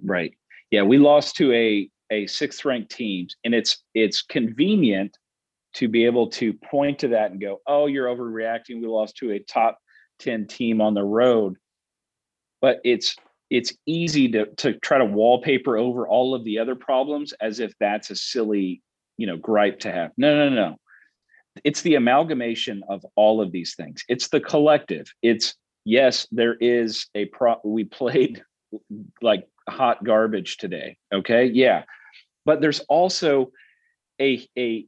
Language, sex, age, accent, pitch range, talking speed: English, male, 40-59, American, 105-140 Hz, 165 wpm